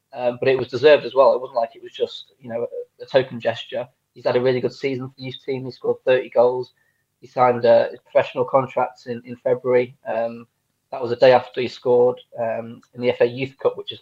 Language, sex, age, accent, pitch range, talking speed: Danish, male, 20-39, British, 120-185 Hz, 245 wpm